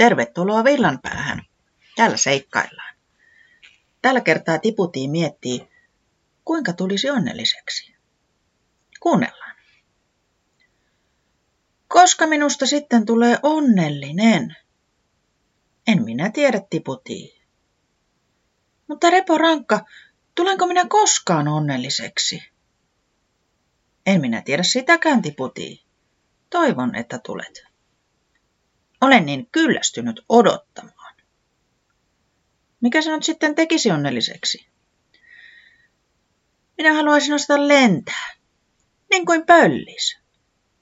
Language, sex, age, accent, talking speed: Finnish, female, 30-49, native, 80 wpm